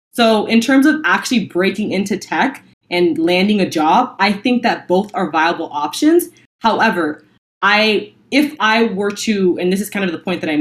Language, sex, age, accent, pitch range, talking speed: English, female, 20-39, American, 170-220 Hz, 190 wpm